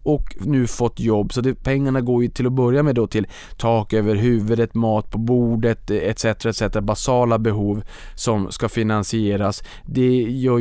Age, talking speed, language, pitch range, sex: 20-39, 170 wpm, Swedish, 105-125 Hz, male